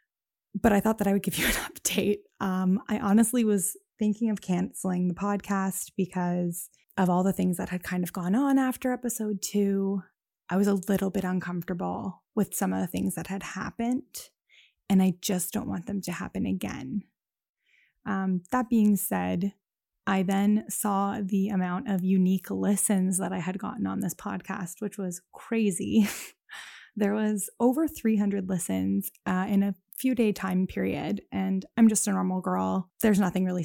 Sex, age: female, 20-39